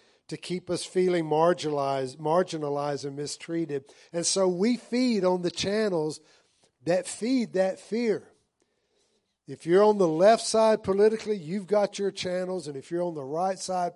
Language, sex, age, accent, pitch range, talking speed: English, male, 50-69, American, 145-190 Hz, 160 wpm